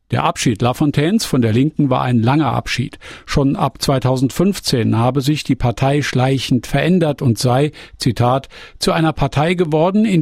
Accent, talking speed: German, 160 wpm